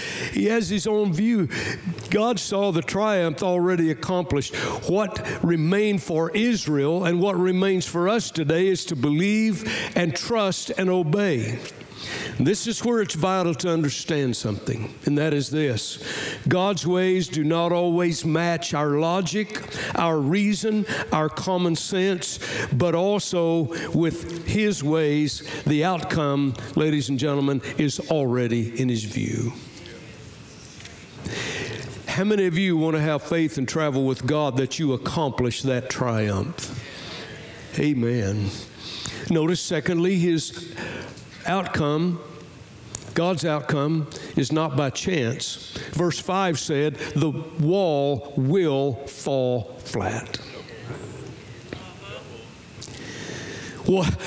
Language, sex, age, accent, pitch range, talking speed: English, male, 60-79, American, 140-185 Hz, 115 wpm